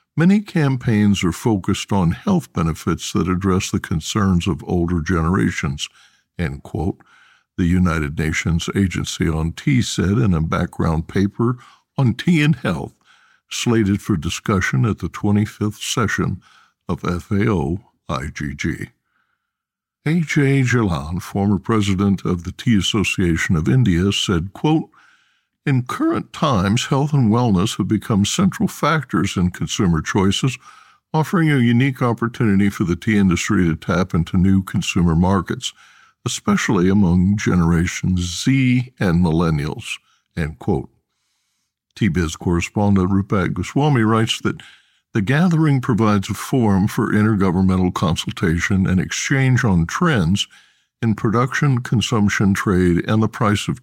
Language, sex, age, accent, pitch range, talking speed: English, male, 60-79, American, 90-125 Hz, 130 wpm